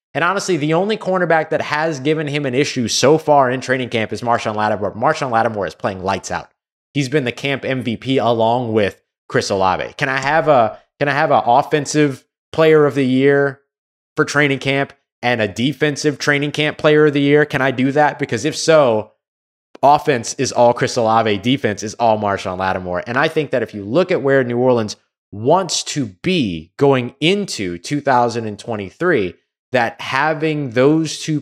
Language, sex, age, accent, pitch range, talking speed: English, male, 20-39, American, 115-150 Hz, 180 wpm